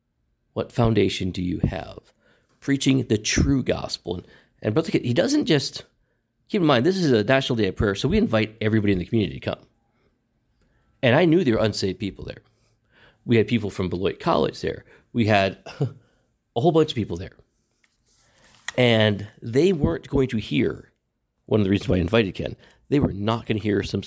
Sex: male